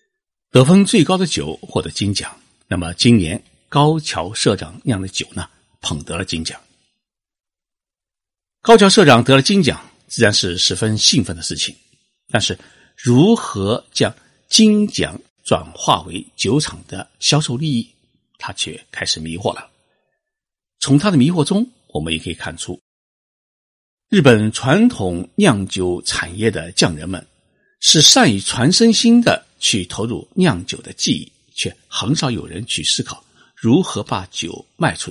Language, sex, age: Chinese, male, 50-69